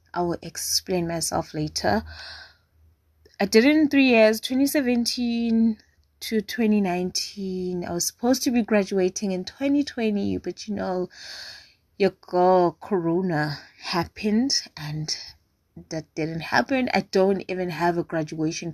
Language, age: English, 20-39